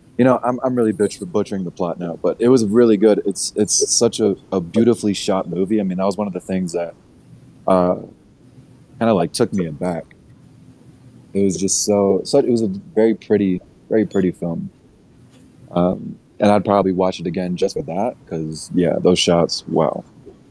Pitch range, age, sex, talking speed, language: 90-105 Hz, 20-39, male, 200 wpm, English